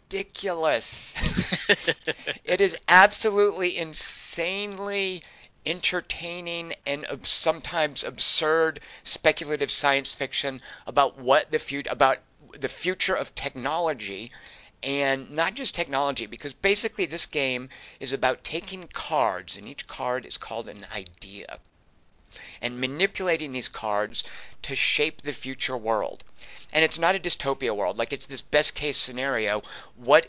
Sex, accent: male, American